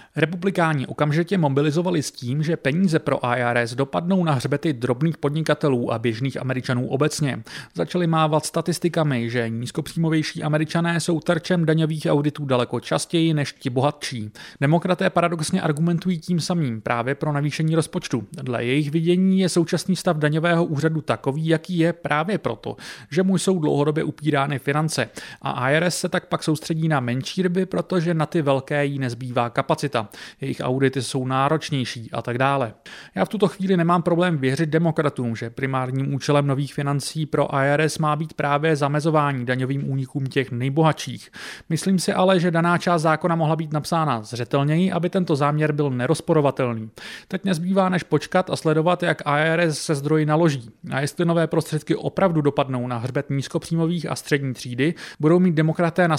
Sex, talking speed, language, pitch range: male, 160 wpm, Czech, 135-170 Hz